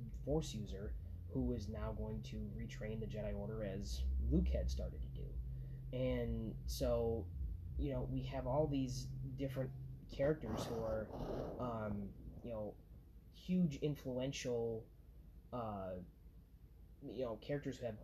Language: English